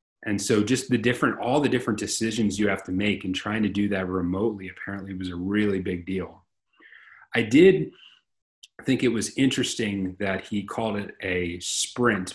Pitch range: 95-110 Hz